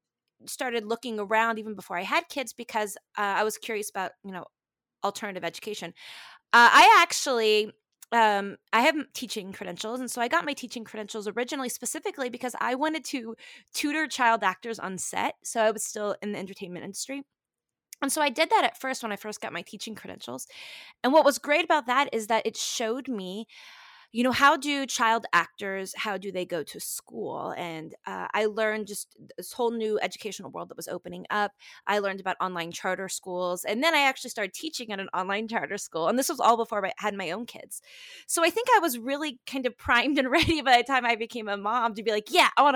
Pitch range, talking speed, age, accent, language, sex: 200-275 Hz, 215 wpm, 20-39, American, English, female